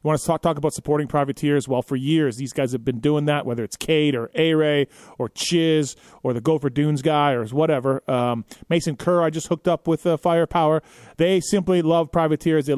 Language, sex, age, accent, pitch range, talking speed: English, male, 30-49, American, 140-175 Hz, 215 wpm